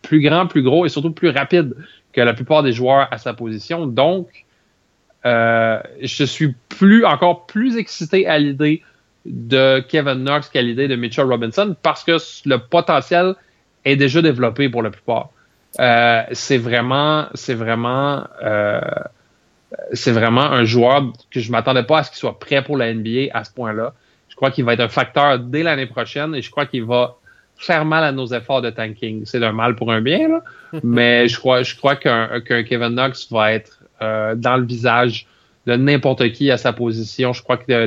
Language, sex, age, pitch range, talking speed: French, male, 30-49, 120-145 Hz, 195 wpm